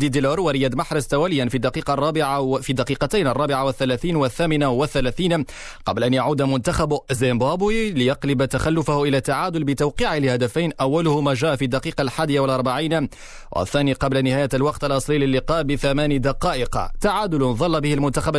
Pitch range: 135-155 Hz